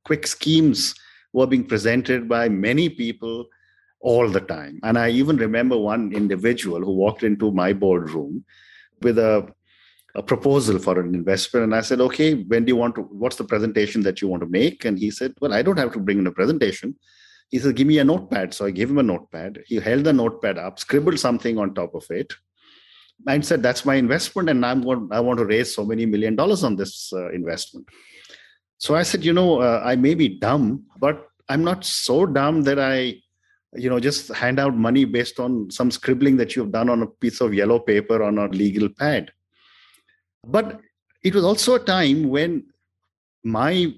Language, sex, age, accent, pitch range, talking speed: English, male, 50-69, Indian, 105-135 Hz, 200 wpm